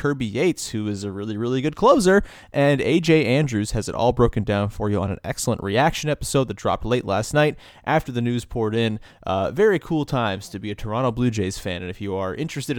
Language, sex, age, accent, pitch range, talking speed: English, male, 30-49, American, 110-145 Hz, 235 wpm